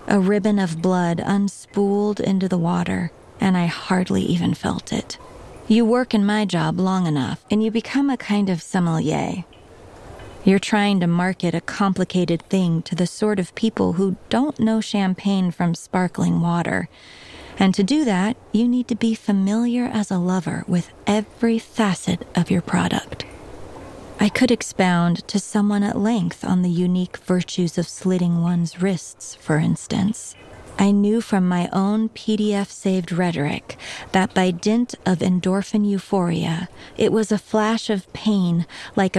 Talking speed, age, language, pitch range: 155 wpm, 30-49, English, 175-210 Hz